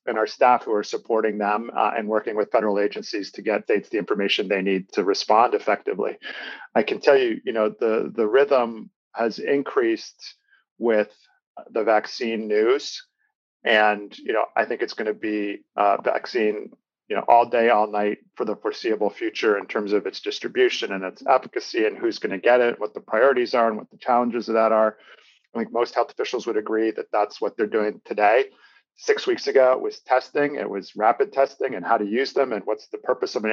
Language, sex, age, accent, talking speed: English, male, 40-59, American, 210 wpm